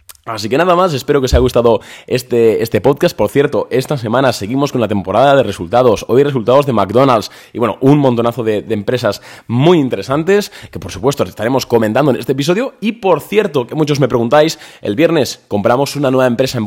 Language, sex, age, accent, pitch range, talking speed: Spanish, male, 20-39, Spanish, 100-135 Hz, 205 wpm